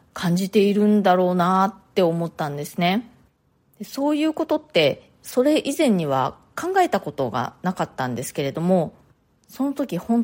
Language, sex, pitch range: Japanese, female, 165-235 Hz